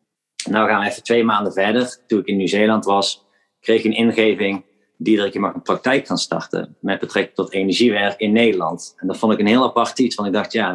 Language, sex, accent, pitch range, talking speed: Dutch, male, Dutch, 95-110 Hz, 235 wpm